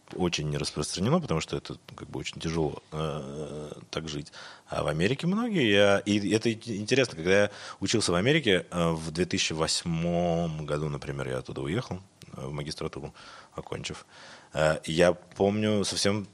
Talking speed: 145 wpm